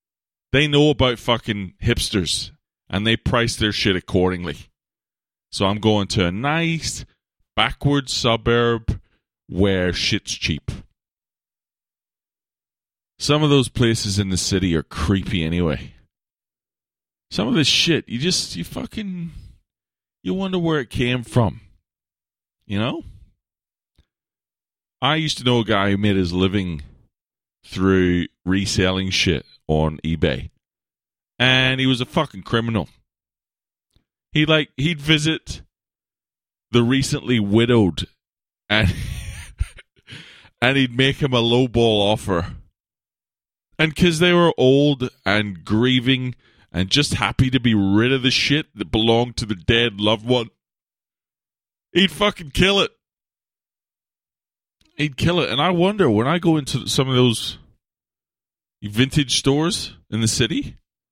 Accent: American